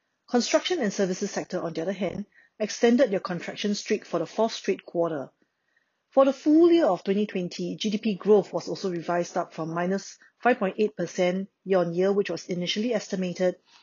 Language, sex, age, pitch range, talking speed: English, female, 30-49, 180-220 Hz, 160 wpm